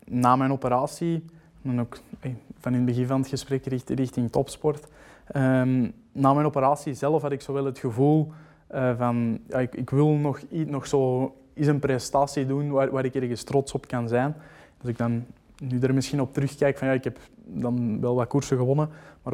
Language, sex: Dutch, male